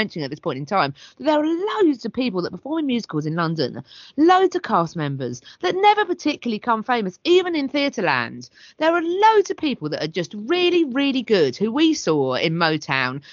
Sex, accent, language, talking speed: female, British, English, 205 wpm